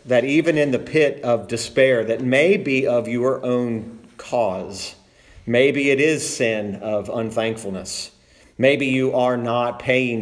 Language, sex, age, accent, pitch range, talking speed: English, male, 40-59, American, 110-135 Hz, 145 wpm